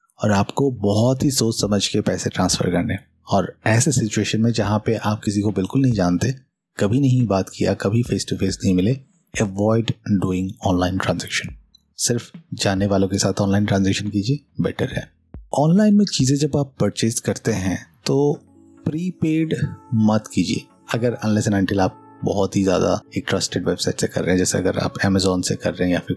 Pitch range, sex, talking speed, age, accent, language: 100-130 Hz, male, 185 wpm, 30-49, native, Hindi